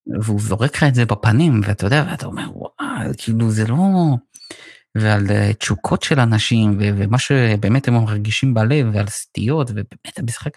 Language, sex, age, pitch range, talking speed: Hebrew, male, 20-39, 100-125 Hz, 160 wpm